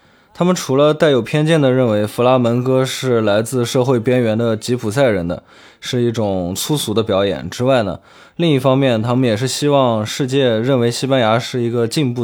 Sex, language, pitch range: male, Chinese, 105-135 Hz